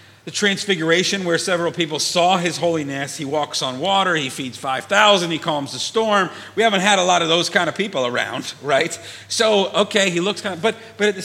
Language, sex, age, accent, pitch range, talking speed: English, male, 40-59, American, 140-205 Hz, 225 wpm